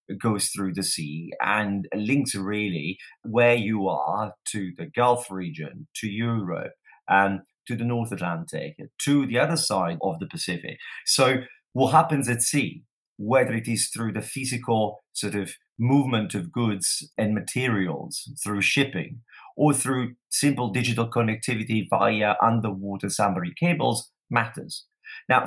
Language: English